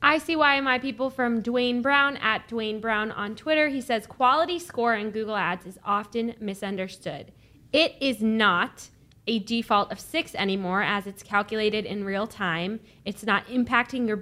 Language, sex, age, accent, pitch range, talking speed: English, female, 10-29, American, 200-240 Hz, 175 wpm